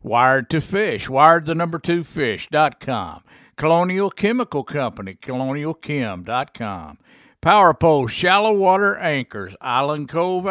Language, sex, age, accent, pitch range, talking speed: English, male, 50-69, American, 125-180 Hz, 105 wpm